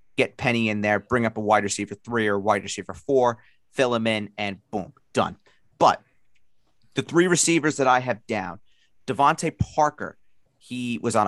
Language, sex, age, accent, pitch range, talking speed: English, male, 30-49, American, 110-140 Hz, 175 wpm